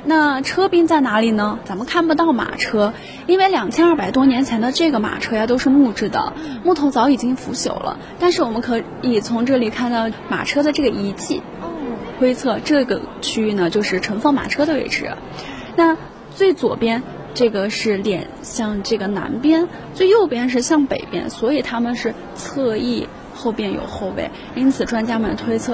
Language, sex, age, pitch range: Chinese, female, 20-39, 230-320 Hz